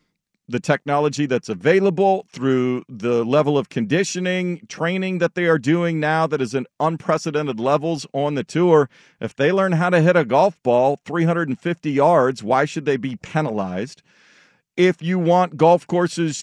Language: English